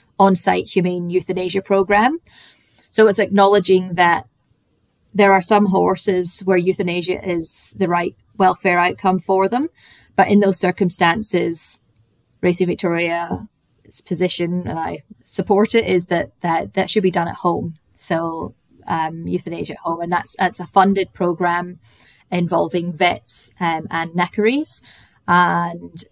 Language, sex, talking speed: English, female, 135 wpm